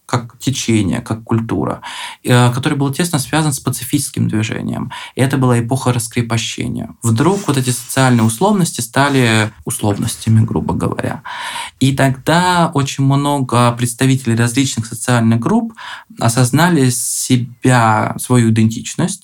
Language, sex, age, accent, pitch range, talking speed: Russian, male, 20-39, native, 115-140 Hz, 115 wpm